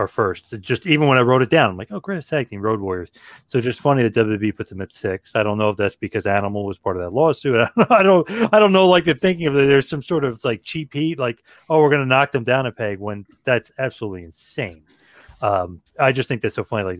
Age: 30-49